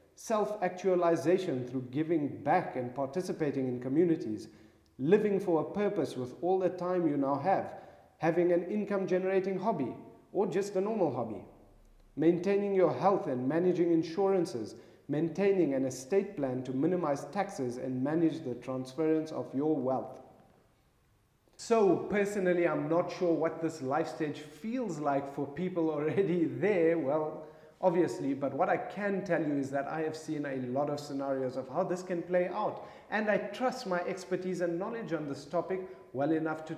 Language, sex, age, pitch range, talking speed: English, male, 40-59, 140-185 Hz, 160 wpm